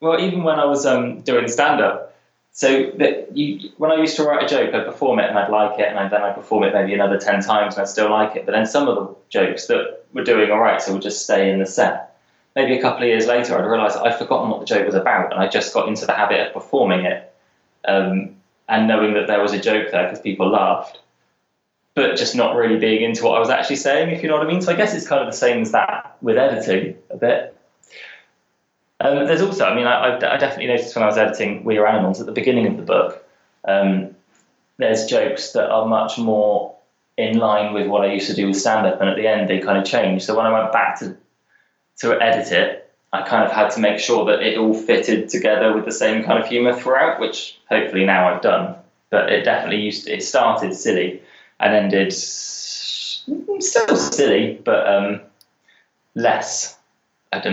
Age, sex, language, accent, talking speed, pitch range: 20-39, male, French, British, 235 wpm, 100-125 Hz